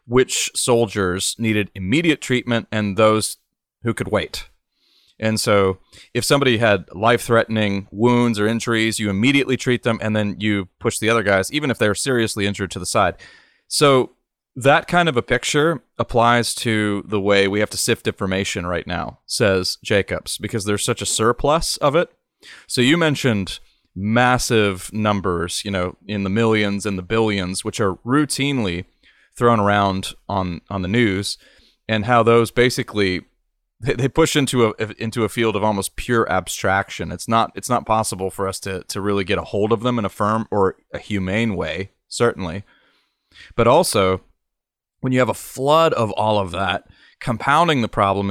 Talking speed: 175 wpm